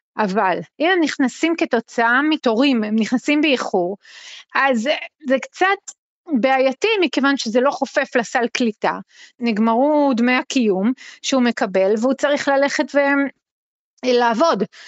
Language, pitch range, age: Hebrew, 220-280 Hz, 30-49